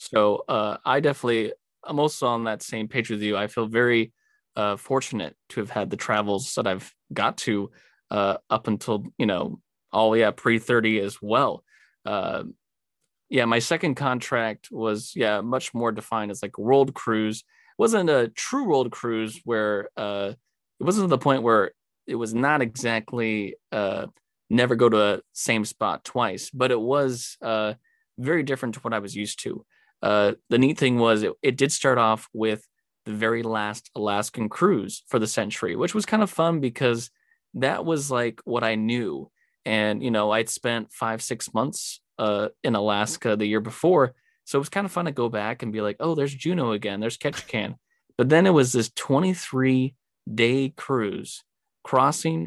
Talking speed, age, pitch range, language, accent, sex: 185 wpm, 20-39, 110-130 Hz, English, American, male